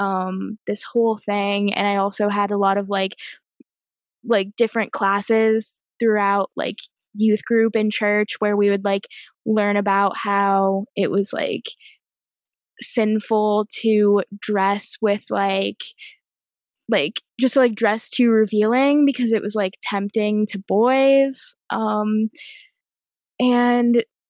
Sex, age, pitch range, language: female, 10-29, 195-225 Hz, English